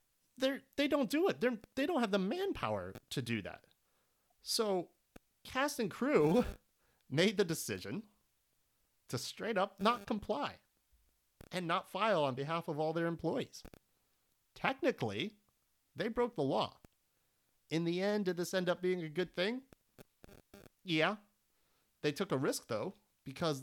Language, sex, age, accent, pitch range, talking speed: English, male, 30-49, American, 140-205 Hz, 150 wpm